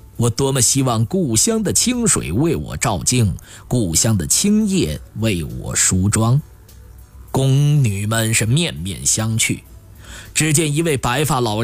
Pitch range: 100-140 Hz